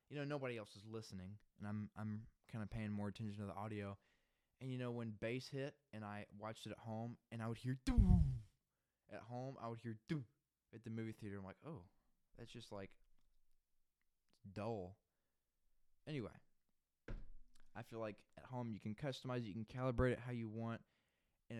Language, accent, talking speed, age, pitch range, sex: English, American, 195 wpm, 20-39, 105-125 Hz, male